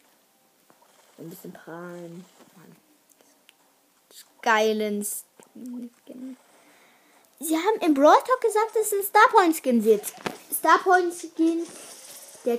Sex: female